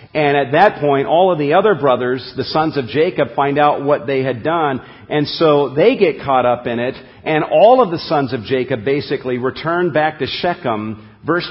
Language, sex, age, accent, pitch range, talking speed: English, male, 50-69, American, 120-160 Hz, 210 wpm